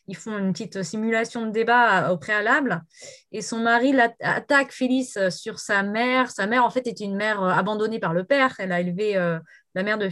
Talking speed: 210 wpm